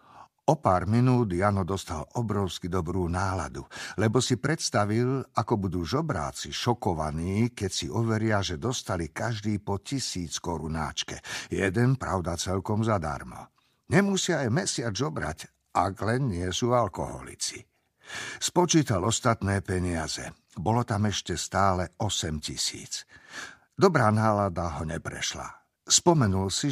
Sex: male